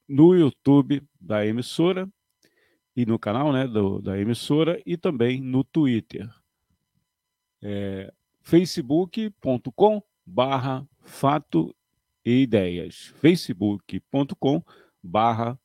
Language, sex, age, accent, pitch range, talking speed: Portuguese, male, 50-69, Brazilian, 110-160 Hz, 75 wpm